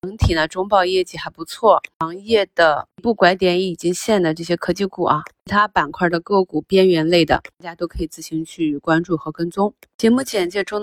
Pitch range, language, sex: 165-195 Hz, Chinese, female